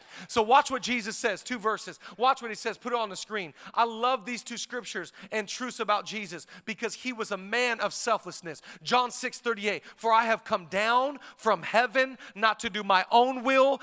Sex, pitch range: male, 180-240 Hz